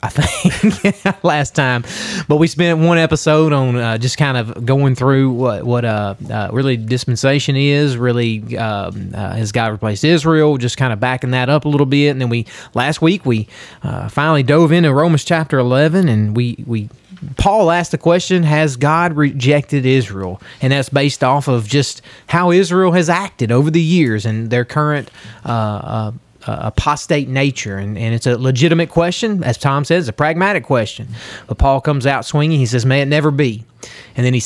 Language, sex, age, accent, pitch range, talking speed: English, male, 30-49, American, 120-160 Hz, 190 wpm